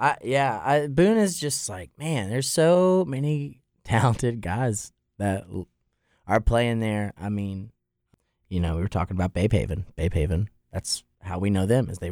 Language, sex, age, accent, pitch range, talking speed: English, male, 30-49, American, 90-125 Hz, 180 wpm